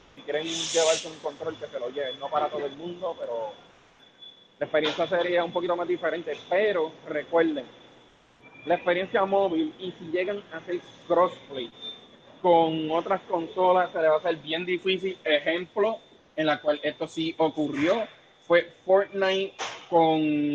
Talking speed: 150 wpm